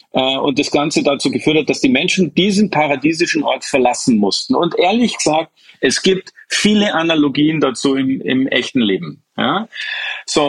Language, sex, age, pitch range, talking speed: German, male, 40-59, 130-185 Hz, 155 wpm